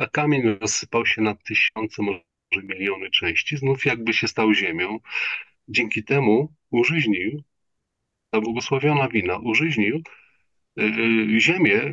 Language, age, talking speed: Polish, 40-59, 110 wpm